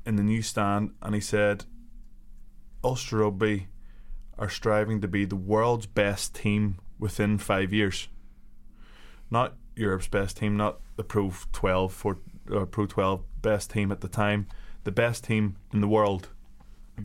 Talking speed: 150 wpm